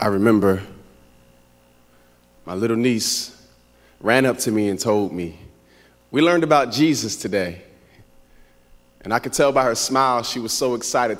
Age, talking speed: 30-49, 150 wpm